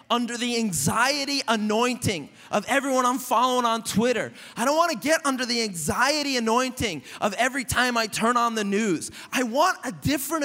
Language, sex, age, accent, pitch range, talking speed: English, male, 20-39, American, 190-260 Hz, 180 wpm